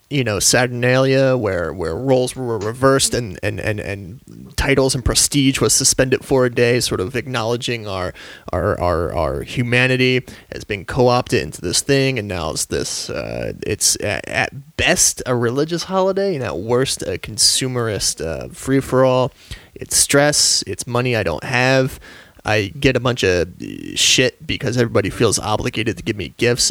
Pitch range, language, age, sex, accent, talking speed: 115-145 Hz, English, 30-49, male, American, 170 wpm